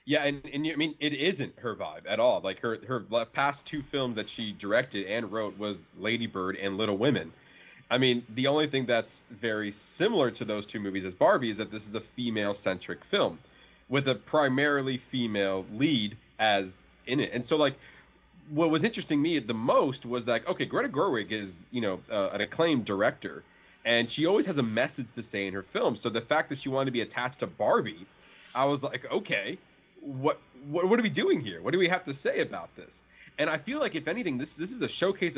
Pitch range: 110-150 Hz